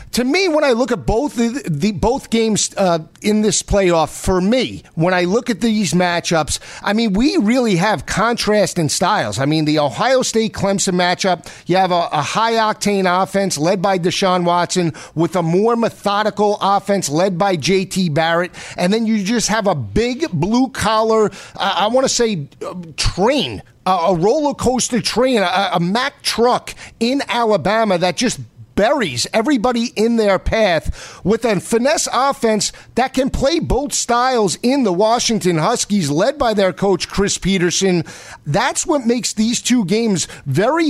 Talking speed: 175 wpm